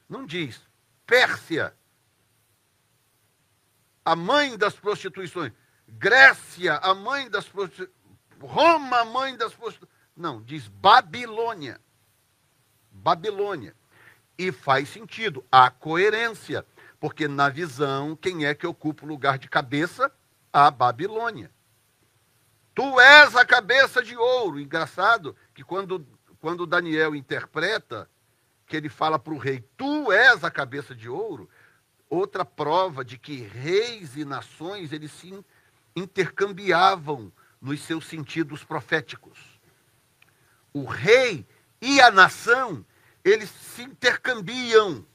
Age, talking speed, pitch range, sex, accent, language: 60-79, 115 wpm, 130-200 Hz, male, Brazilian, Portuguese